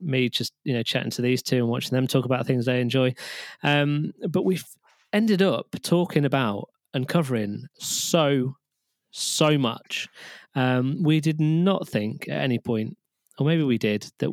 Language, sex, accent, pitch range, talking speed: English, male, British, 120-160 Hz, 170 wpm